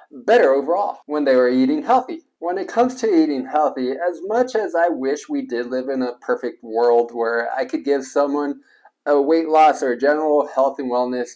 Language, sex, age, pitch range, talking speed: English, male, 20-39, 130-180 Hz, 205 wpm